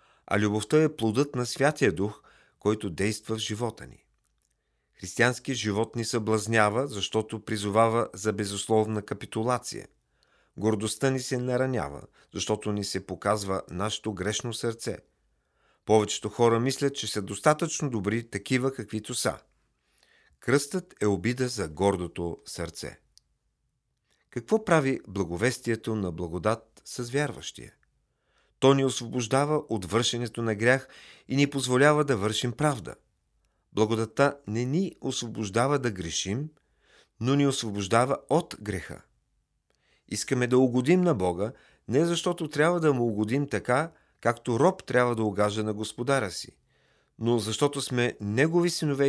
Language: Bulgarian